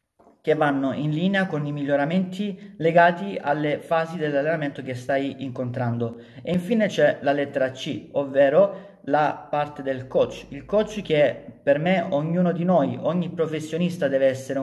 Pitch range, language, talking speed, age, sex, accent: 140-175 Hz, Italian, 150 wpm, 40-59, male, native